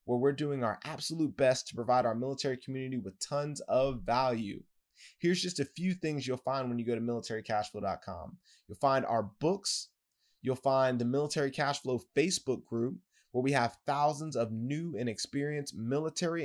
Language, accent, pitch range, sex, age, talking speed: English, American, 125-150 Hz, male, 20-39, 170 wpm